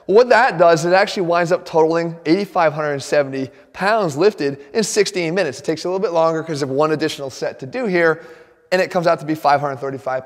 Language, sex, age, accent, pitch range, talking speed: English, male, 20-39, American, 160-205 Hz, 210 wpm